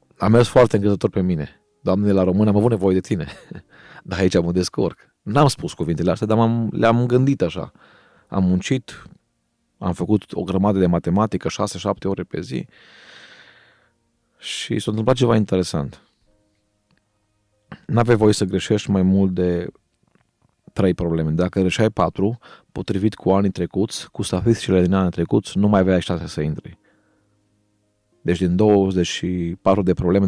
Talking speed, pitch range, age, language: 155 wpm, 90-105 Hz, 30-49, Romanian